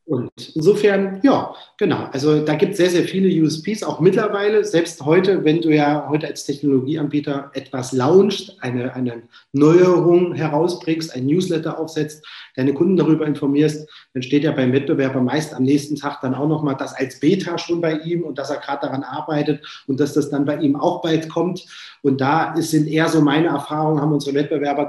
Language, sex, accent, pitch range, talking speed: German, male, German, 140-160 Hz, 190 wpm